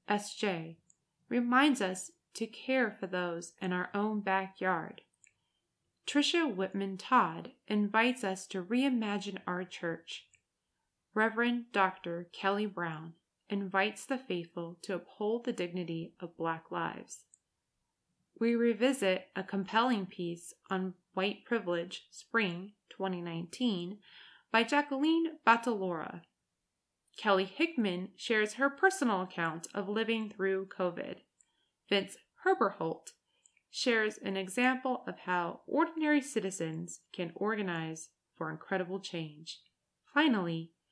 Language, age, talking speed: English, 20-39, 105 wpm